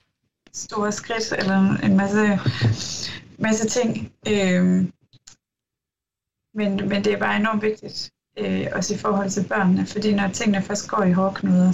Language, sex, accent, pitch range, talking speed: Danish, female, native, 180-205 Hz, 135 wpm